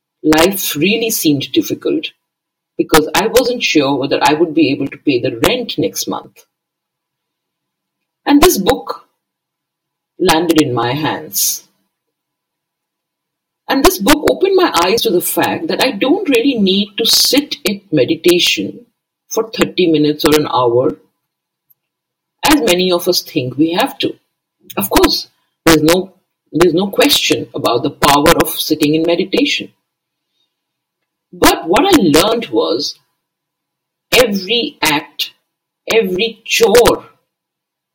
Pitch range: 165-205 Hz